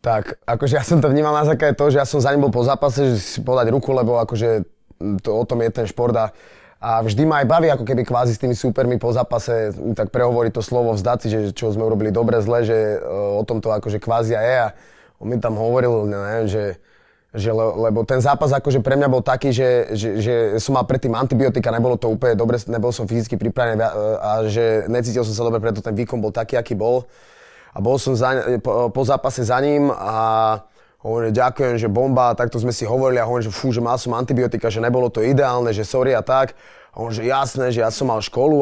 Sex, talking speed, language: male, 225 wpm, Slovak